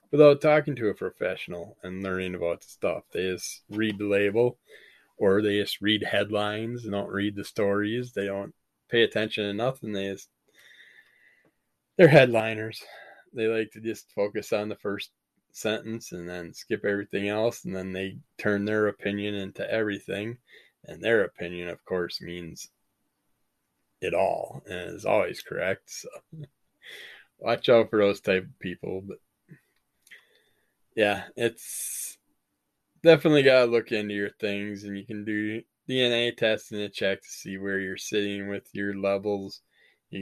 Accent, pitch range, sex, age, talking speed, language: American, 95-110 Hz, male, 20-39, 155 wpm, English